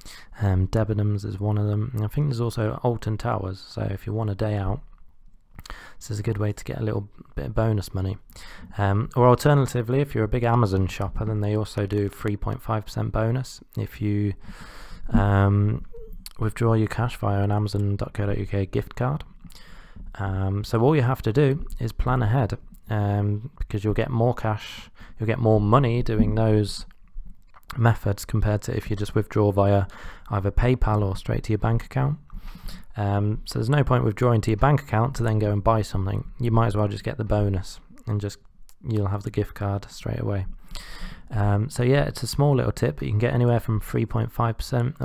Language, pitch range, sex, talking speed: English, 100-120 Hz, male, 190 wpm